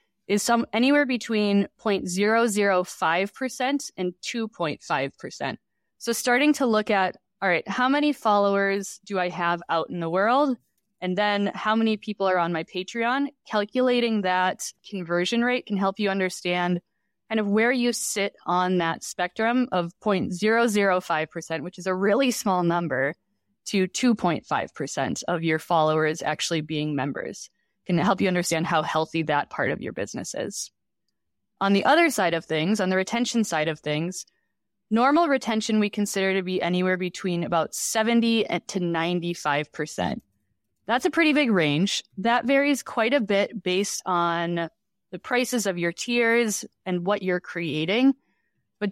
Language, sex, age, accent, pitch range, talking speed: English, female, 20-39, American, 175-230 Hz, 150 wpm